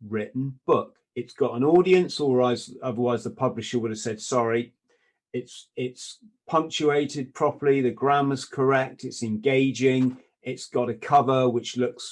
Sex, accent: male, British